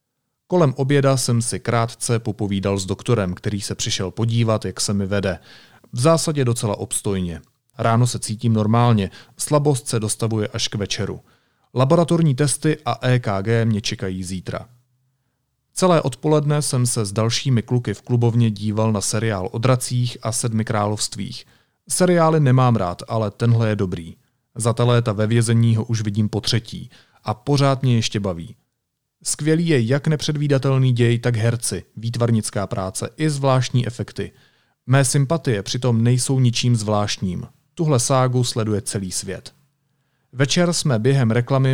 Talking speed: 145 wpm